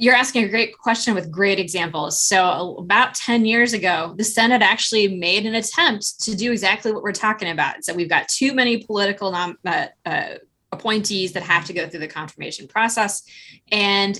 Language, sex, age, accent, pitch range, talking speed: English, female, 20-39, American, 175-215 Hz, 185 wpm